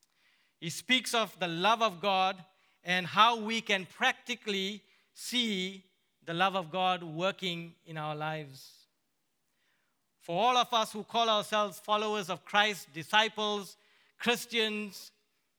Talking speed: 125 wpm